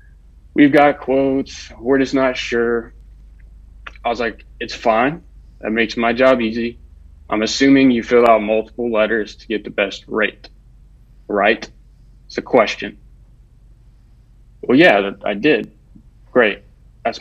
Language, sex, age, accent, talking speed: English, male, 20-39, American, 135 wpm